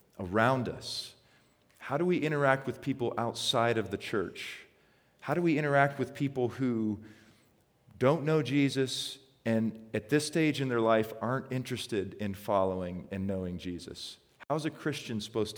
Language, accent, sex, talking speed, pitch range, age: English, American, male, 160 wpm, 105-130 Hz, 40-59